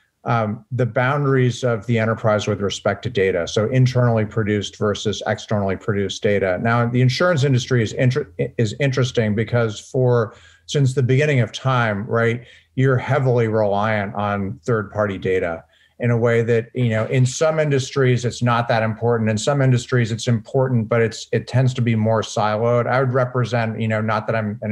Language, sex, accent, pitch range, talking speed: English, male, American, 110-130 Hz, 180 wpm